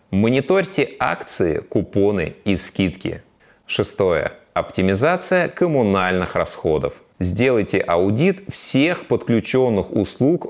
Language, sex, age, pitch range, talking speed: Russian, male, 20-39, 90-140 Hz, 80 wpm